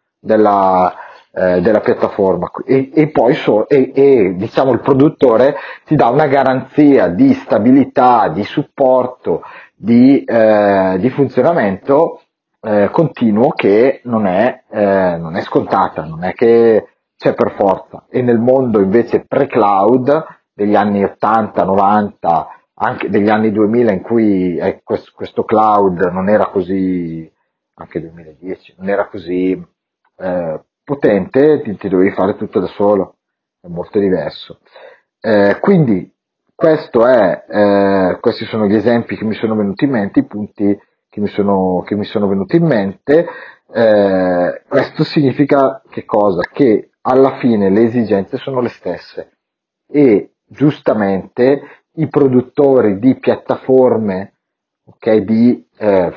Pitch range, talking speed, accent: 100-130 Hz, 135 wpm, native